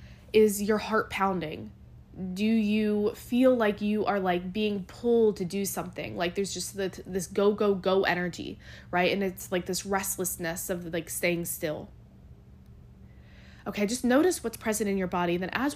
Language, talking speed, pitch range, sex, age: English, 170 wpm, 180-230 Hz, female, 20-39